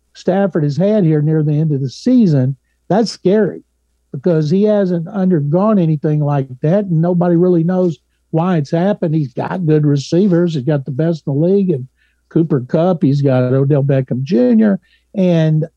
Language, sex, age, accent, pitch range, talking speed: English, male, 60-79, American, 145-175 Hz, 175 wpm